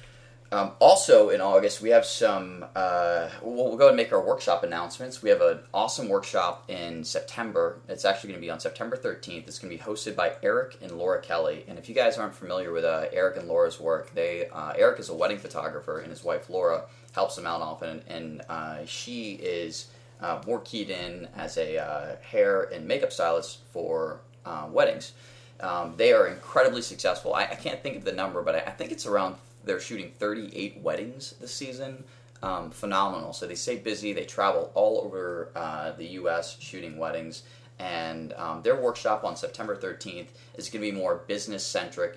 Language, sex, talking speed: English, male, 200 wpm